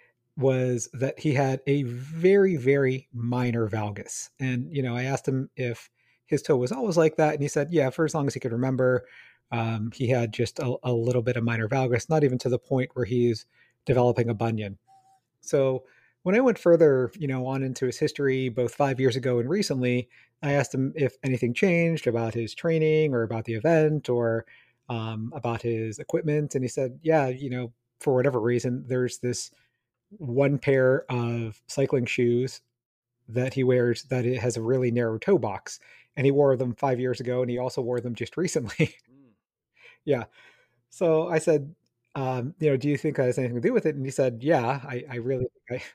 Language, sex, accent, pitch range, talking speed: English, male, American, 120-140 Hz, 200 wpm